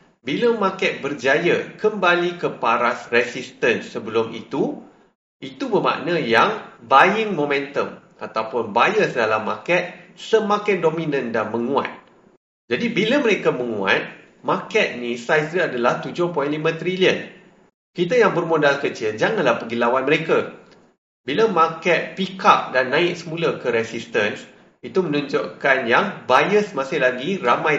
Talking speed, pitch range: 125 wpm, 140-200 Hz